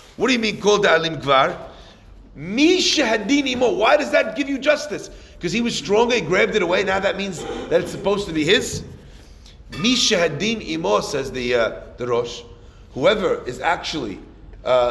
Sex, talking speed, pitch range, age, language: male, 170 wpm, 175-285 Hz, 40-59, English